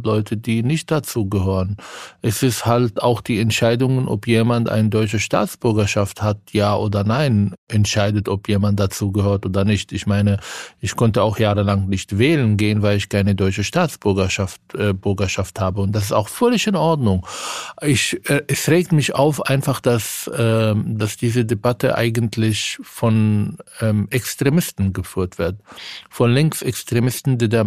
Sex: male